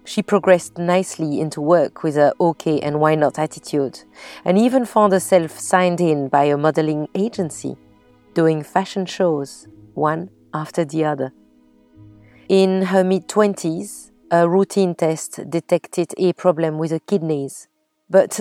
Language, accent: English, French